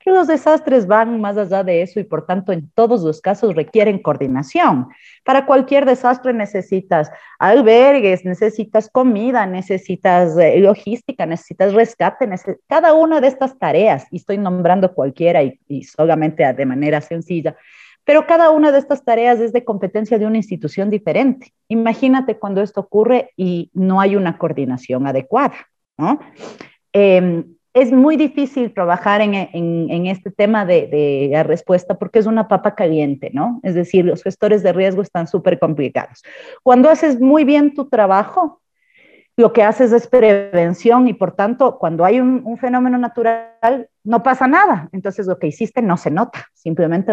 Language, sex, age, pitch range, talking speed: Spanish, female, 40-59, 175-255 Hz, 160 wpm